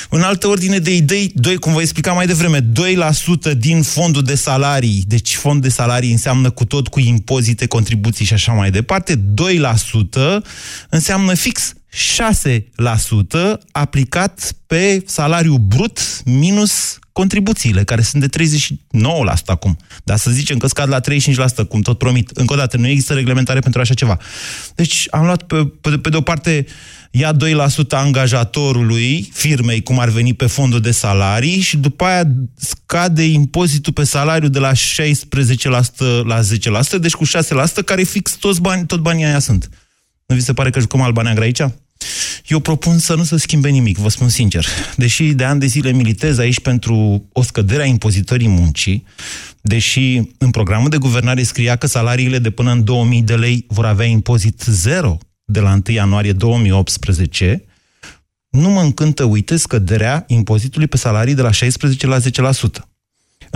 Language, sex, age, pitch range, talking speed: Romanian, male, 20-39, 115-155 Hz, 165 wpm